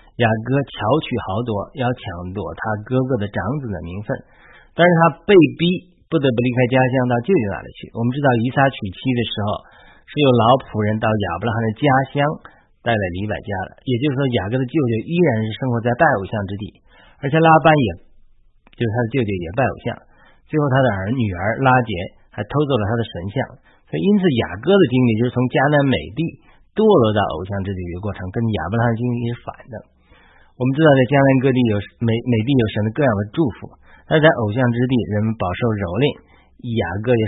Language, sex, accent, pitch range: Chinese, male, native, 105-135 Hz